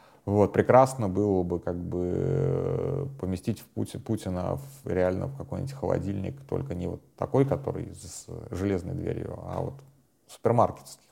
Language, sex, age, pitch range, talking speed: Russian, male, 30-49, 95-120 Hz, 145 wpm